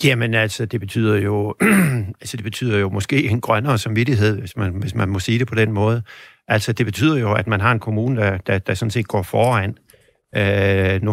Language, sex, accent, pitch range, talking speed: Danish, male, native, 95-115 Hz, 220 wpm